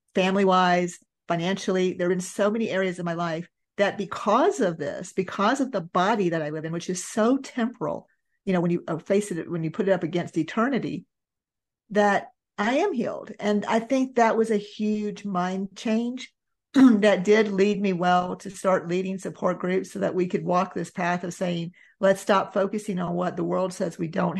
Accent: American